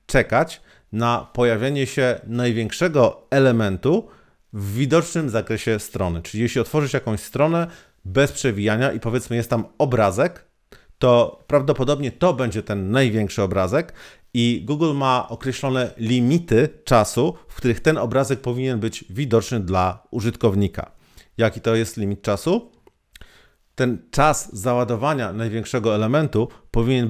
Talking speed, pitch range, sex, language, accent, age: 120 wpm, 110-135 Hz, male, Polish, native, 40-59